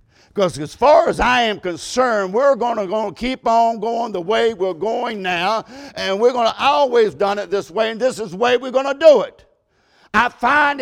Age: 50-69